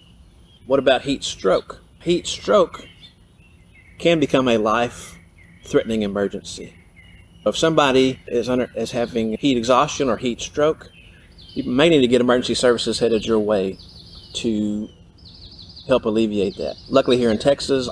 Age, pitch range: 30-49, 95-125 Hz